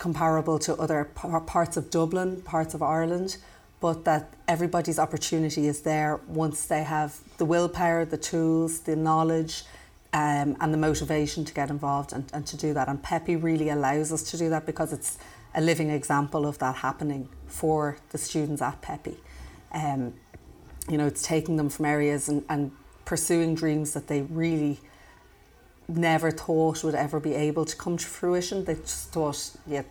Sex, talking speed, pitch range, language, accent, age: female, 175 wpm, 145-165 Hz, English, Irish, 30-49